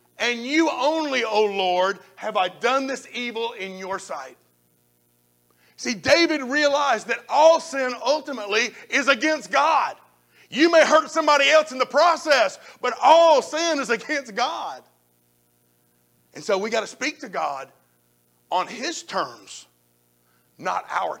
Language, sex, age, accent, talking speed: English, male, 50-69, American, 140 wpm